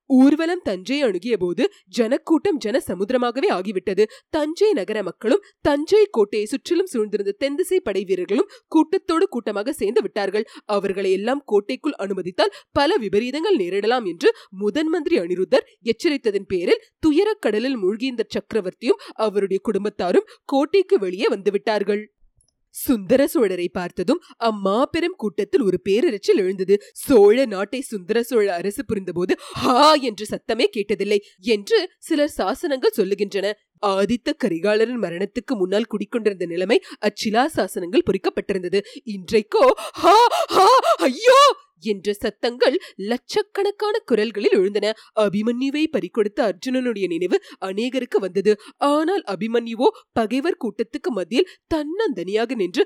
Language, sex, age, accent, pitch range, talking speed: Tamil, female, 30-49, native, 210-340 Hz, 85 wpm